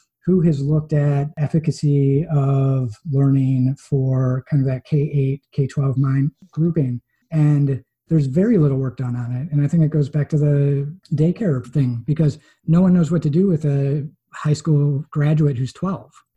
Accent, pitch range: American, 135-150 Hz